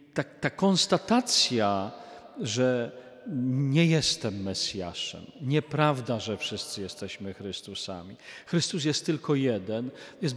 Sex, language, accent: male, Polish, native